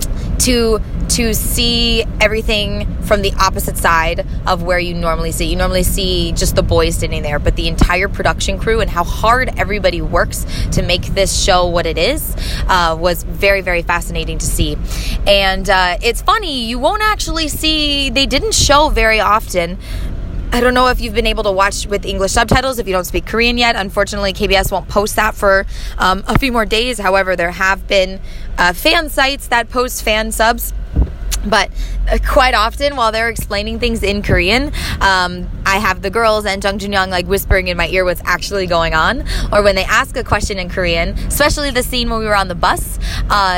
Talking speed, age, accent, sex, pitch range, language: 195 wpm, 20-39, American, female, 180-230 Hz, English